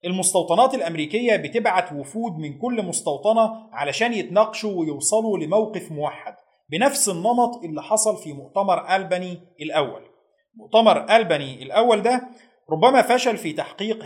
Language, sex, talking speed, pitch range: Arabic, male, 120 wpm, 160-220 Hz